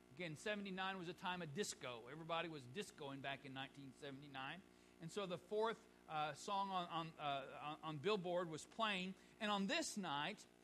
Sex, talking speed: male, 175 wpm